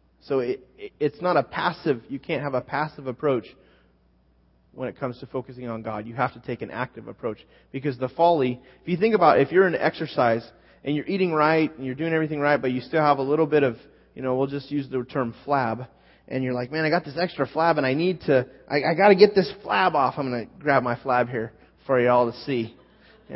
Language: English